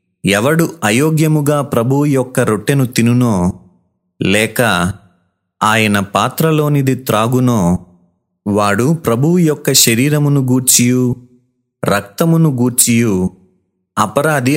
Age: 30-49